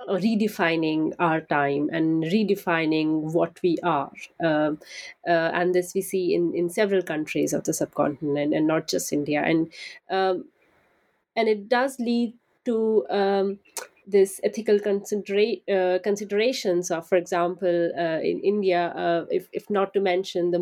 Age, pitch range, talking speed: 30-49, 170-205 Hz, 150 wpm